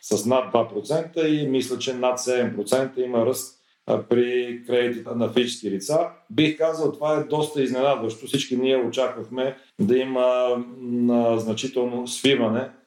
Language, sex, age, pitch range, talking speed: Bulgarian, male, 40-59, 115-130 Hz, 130 wpm